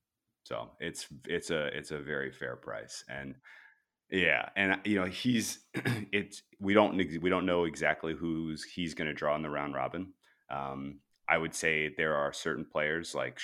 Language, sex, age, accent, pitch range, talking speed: English, male, 30-49, American, 70-85 Hz, 180 wpm